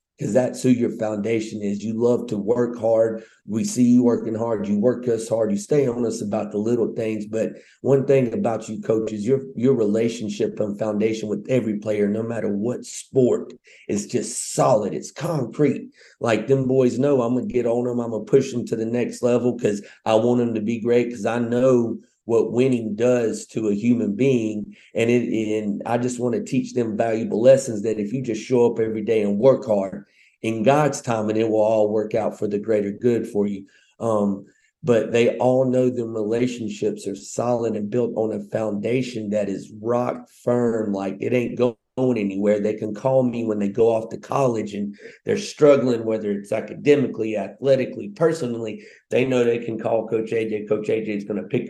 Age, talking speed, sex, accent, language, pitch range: 40-59, 210 wpm, male, American, English, 110-125 Hz